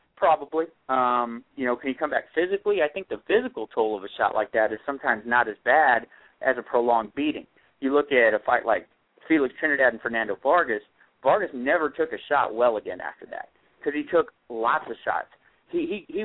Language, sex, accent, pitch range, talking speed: English, male, American, 120-165 Hz, 210 wpm